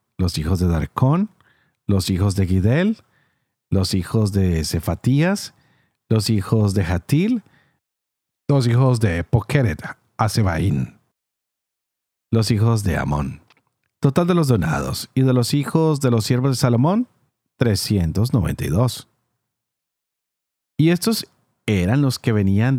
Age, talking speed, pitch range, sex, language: 40-59, 120 wpm, 105-145 Hz, male, Spanish